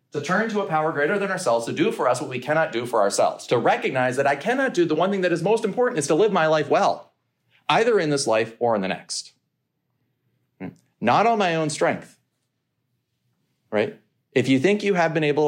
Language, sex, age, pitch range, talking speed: English, male, 40-59, 120-165 Hz, 225 wpm